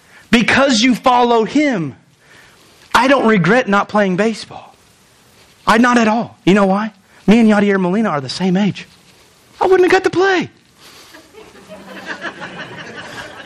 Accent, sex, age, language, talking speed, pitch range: American, male, 30-49, English, 140 wpm, 215-300 Hz